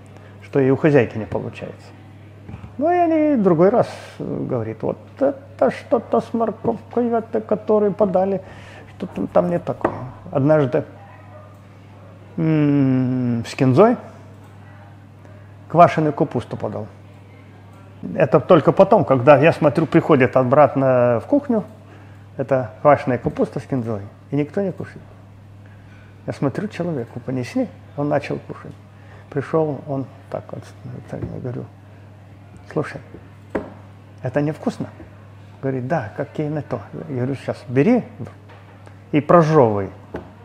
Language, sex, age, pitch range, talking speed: Russian, male, 30-49, 100-160 Hz, 115 wpm